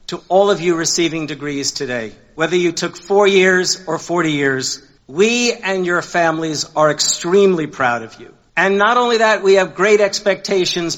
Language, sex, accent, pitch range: English, male, American, 145-195 Hz